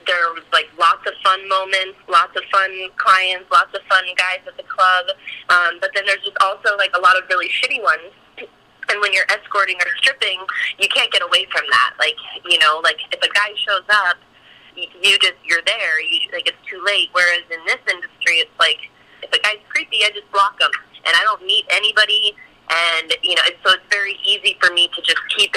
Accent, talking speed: American, 220 wpm